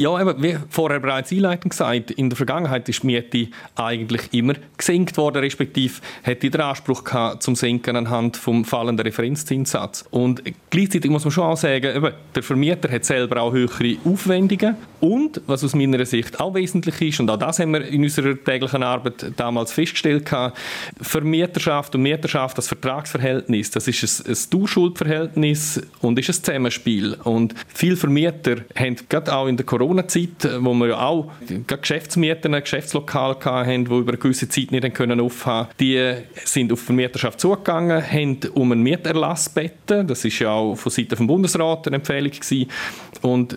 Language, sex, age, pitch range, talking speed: German, male, 40-59, 125-160 Hz, 170 wpm